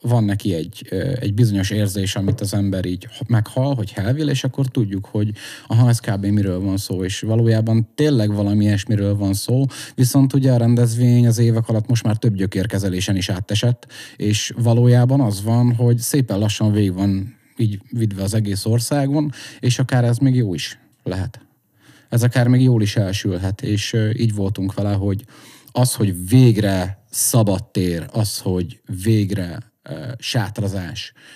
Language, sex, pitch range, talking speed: Hungarian, male, 100-125 Hz, 160 wpm